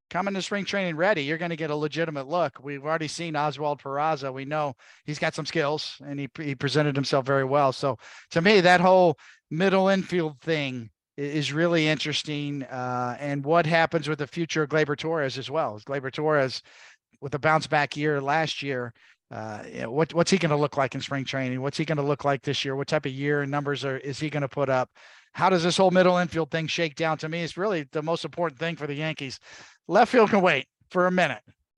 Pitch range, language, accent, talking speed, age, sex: 140-165 Hz, English, American, 230 wpm, 50-69, male